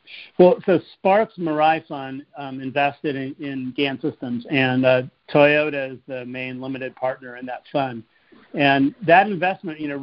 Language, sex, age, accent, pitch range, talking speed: English, male, 50-69, American, 135-160 Hz, 170 wpm